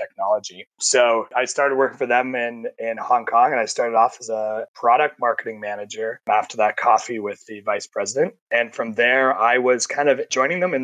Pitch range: 110-130 Hz